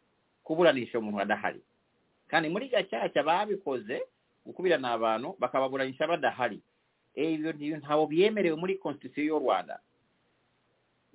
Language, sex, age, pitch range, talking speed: English, male, 50-69, 140-200 Hz, 155 wpm